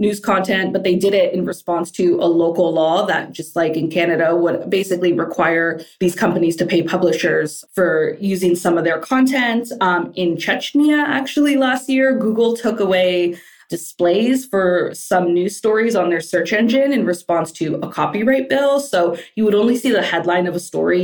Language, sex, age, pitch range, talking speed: English, female, 20-39, 170-200 Hz, 185 wpm